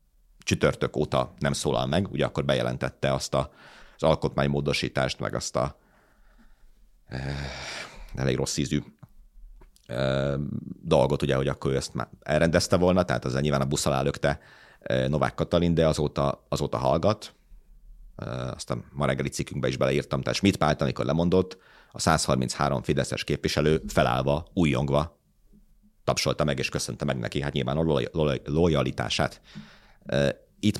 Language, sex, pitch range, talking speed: Hungarian, male, 65-85 Hz, 140 wpm